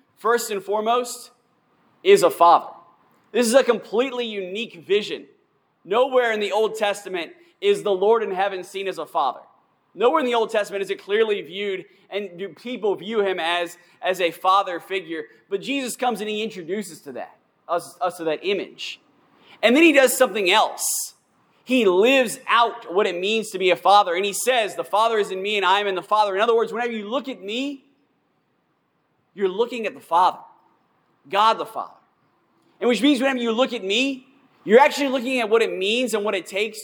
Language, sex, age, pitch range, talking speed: English, male, 20-39, 200-265 Hz, 195 wpm